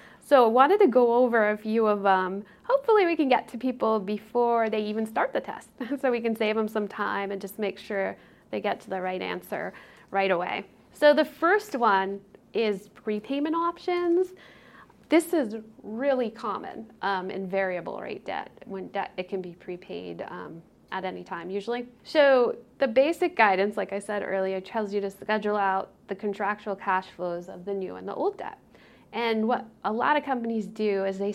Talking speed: 195 wpm